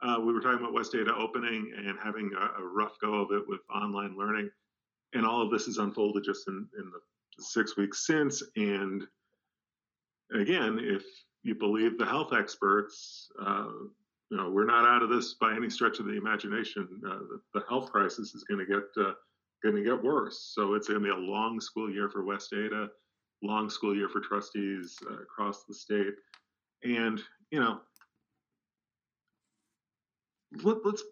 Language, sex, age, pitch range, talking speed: English, male, 40-59, 100-130 Hz, 175 wpm